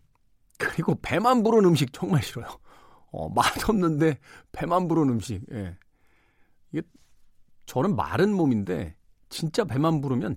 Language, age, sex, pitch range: Korean, 40-59, male, 100-165 Hz